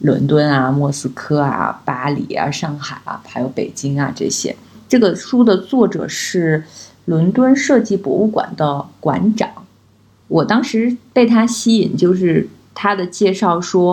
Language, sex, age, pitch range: Chinese, female, 20-39, 150-205 Hz